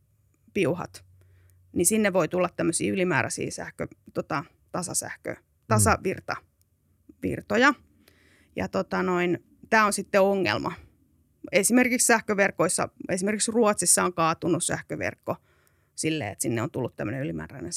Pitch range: 165-215 Hz